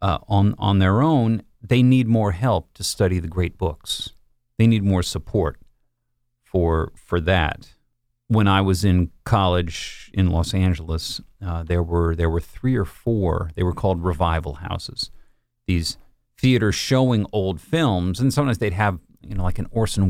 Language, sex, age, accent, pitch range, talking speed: English, male, 40-59, American, 90-120 Hz, 165 wpm